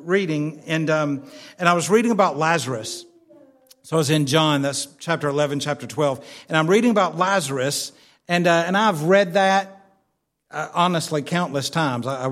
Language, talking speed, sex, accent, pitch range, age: English, 175 wpm, male, American, 165-230 Hz, 50-69